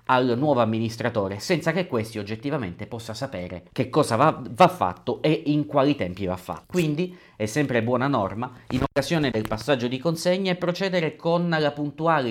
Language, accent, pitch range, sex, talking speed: Italian, native, 110-160 Hz, male, 170 wpm